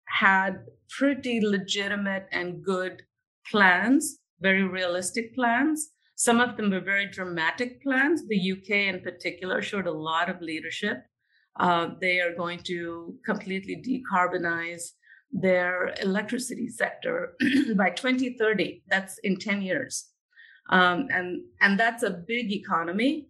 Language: English